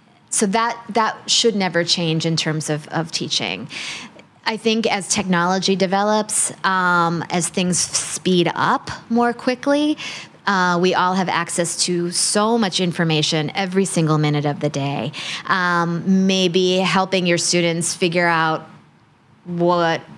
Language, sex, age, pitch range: Thai, female, 20-39, 175-210 Hz